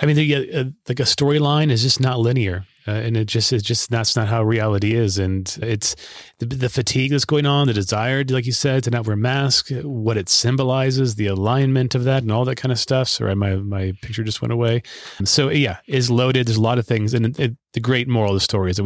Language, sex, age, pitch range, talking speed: English, male, 30-49, 105-130 Hz, 260 wpm